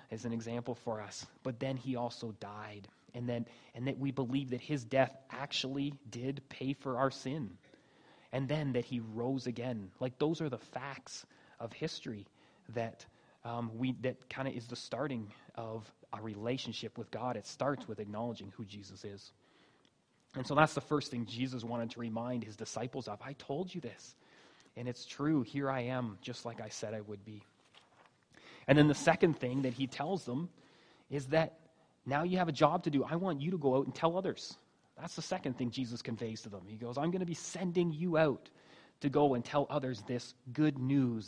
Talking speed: 205 wpm